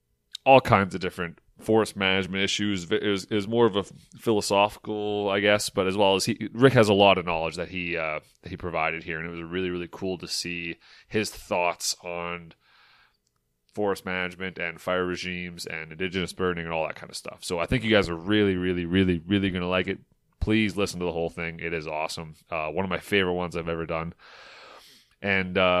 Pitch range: 85-105 Hz